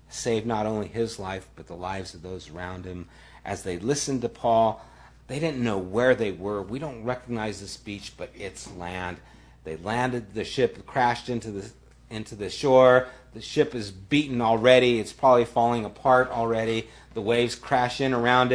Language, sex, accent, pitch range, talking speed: English, male, American, 90-130 Hz, 180 wpm